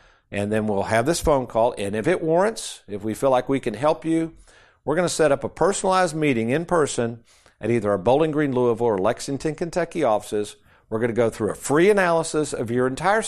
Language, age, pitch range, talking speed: English, 50-69, 115-165 Hz, 225 wpm